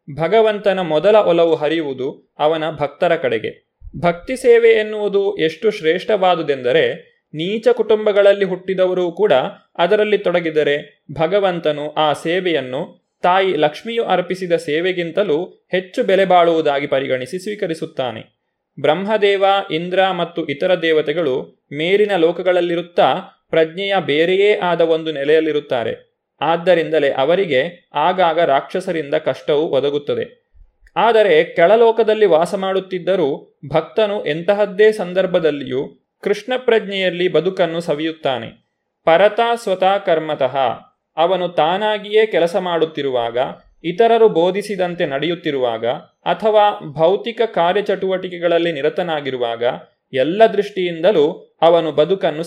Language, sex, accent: Kannada, male, native